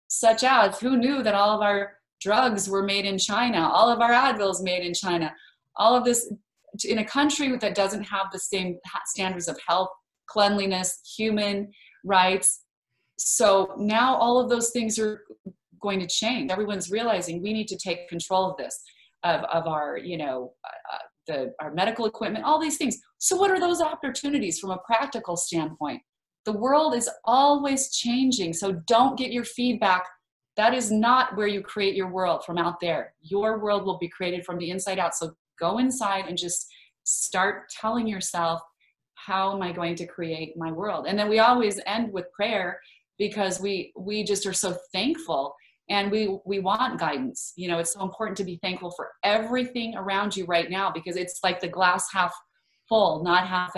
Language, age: English, 30-49